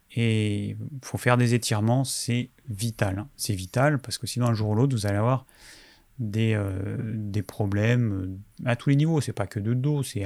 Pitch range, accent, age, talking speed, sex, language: 105-135 Hz, French, 30-49, 200 wpm, male, French